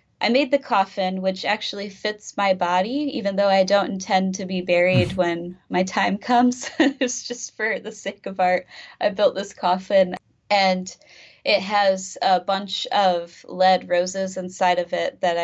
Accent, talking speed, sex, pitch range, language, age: American, 170 wpm, female, 175-195 Hz, English, 20-39